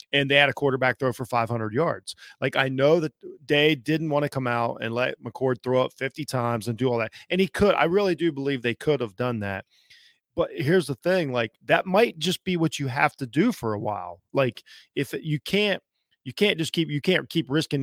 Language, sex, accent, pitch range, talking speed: English, male, American, 120-155 Hz, 240 wpm